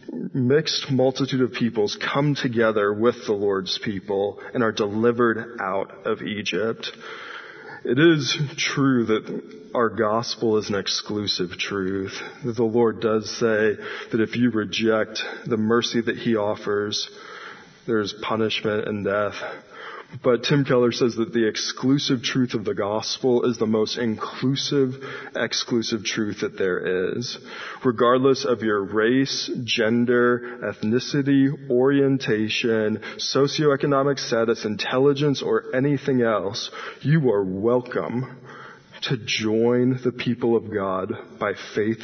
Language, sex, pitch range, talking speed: English, male, 110-130 Hz, 125 wpm